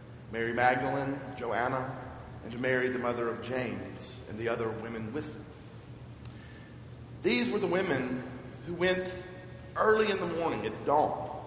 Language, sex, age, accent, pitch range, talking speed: English, male, 40-59, American, 120-140 Hz, 145 wpm